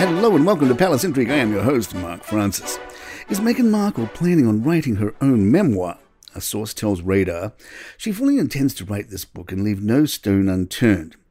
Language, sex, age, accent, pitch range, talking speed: English, male, 50-69, British, 95-115 Hz, 195 wpm